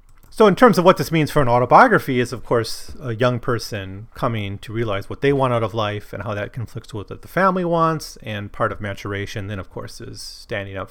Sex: male